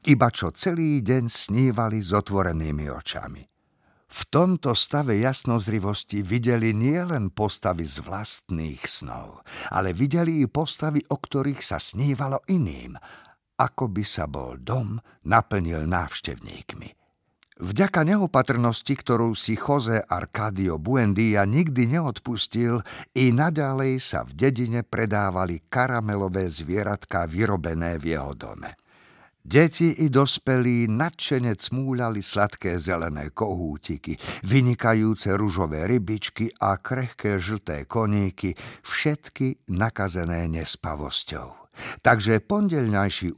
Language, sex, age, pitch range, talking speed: Slovak, male, 50-69, 90-130 Hz, 105 wpm